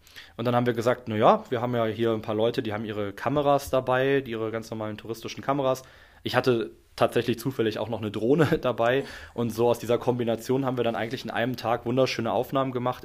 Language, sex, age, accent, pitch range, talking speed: German, male, 20-39, German, 105-120 Hz, 215 wpm